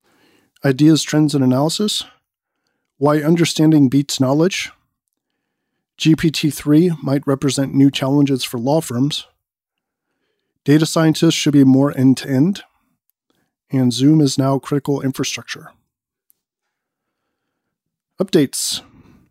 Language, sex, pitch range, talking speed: English, male, 130-150 Hz, 90 wpm